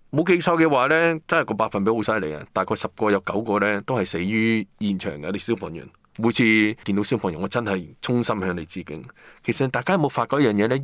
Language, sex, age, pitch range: Chinese, male, 20-39, 100-130 Hz